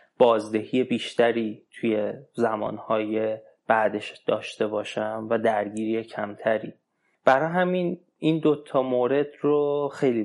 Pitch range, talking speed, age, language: 110-130 Hz, 100 wpm, 20-39, Persian